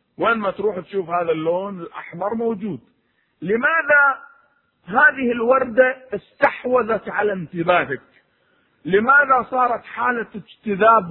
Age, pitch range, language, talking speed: 50-69, 190-255 Hz, Arabic, 90 wpm